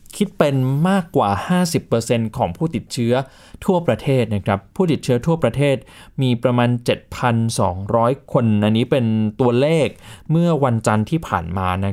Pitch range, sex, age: 115-160 Hz, male, 20-39